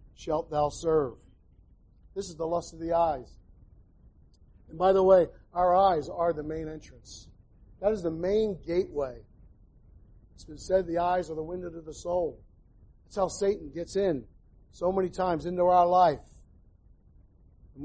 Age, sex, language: 50-69, male, English